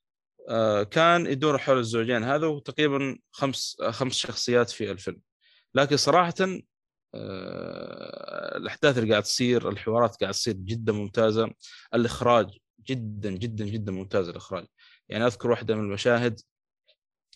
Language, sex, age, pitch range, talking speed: Arabic, male, 20-39, 110-160 Hz, 120 wpm